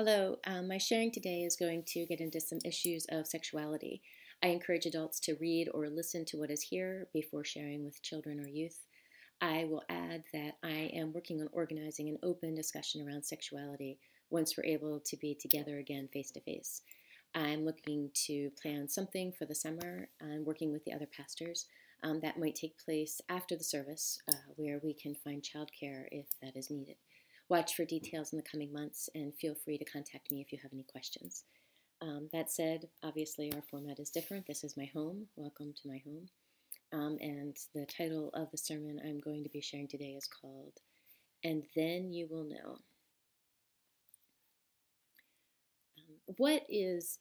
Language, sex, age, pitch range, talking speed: English, female, 30-49, 150-165 Hz, 180 wpm